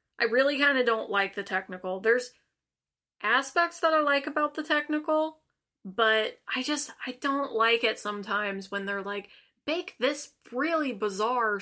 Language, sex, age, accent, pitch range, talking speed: English, female, 20-39, American, 205-270 Hz, 160 wpm